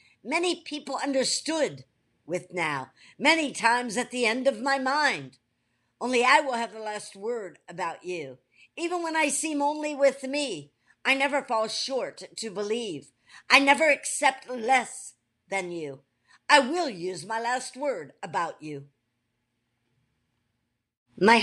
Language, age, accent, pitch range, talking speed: English, 60-79, American, 160-265 Hz, 140 wpm